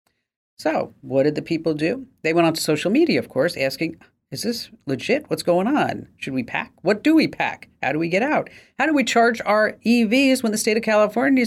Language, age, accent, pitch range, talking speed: English, 40-59, American, 135-225 Hz, 230 wpm